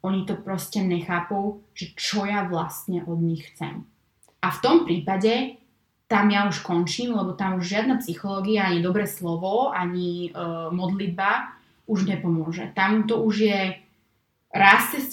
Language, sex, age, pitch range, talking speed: Slovak, female, 20-39, 175-205 Hz, 145 wpm